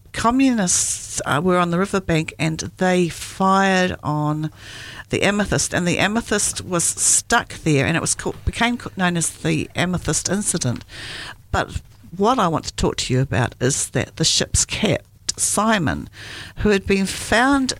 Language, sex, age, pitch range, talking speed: English, female, 50-69, 130-180 Hz, 160 wpm